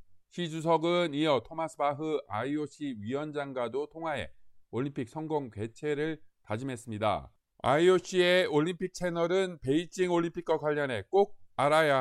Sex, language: male, Korean